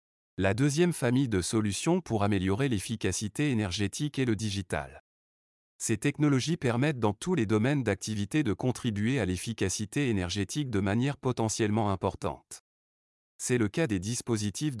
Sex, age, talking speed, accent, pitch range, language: male, 30-49, 140 wpm, French, 100-135 Hz, French